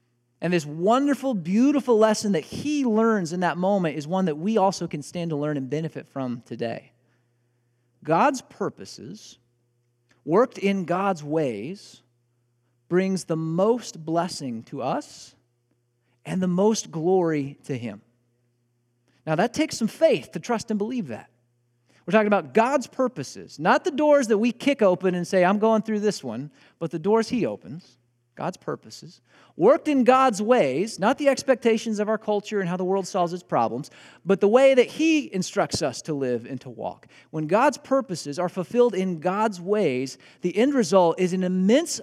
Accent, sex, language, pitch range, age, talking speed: American, male, English, 125-210 Hz, 40-59, 175 wpm